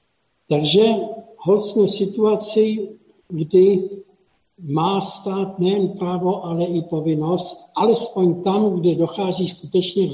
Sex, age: male, 60-79